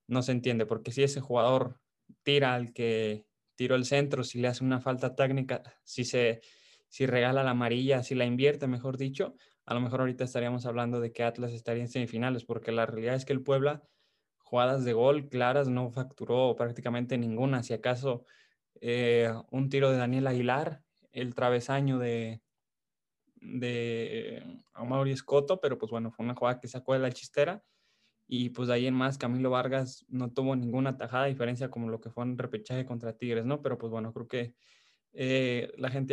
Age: 20-39